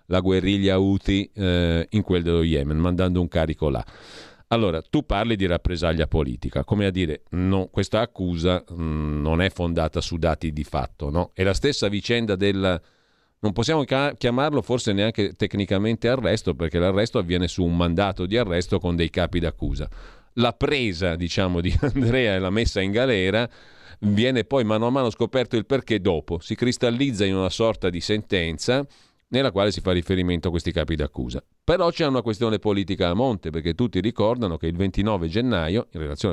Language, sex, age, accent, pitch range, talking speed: Italian, male, 40-59, native, 85-110 Hz, 180 wpm